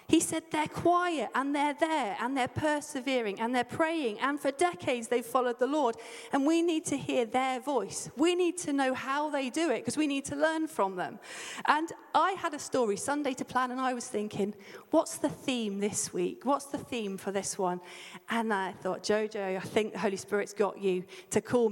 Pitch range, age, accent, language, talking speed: 215-290 Hz, 40-59, British, English, 215 wpm